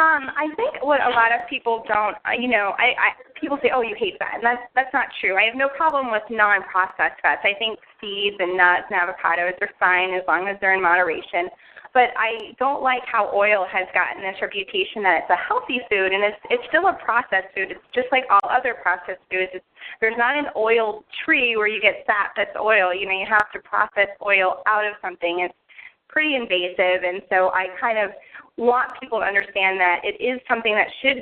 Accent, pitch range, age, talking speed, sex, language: American, 185-245 Hz, 20-39, 225 wpm, female, English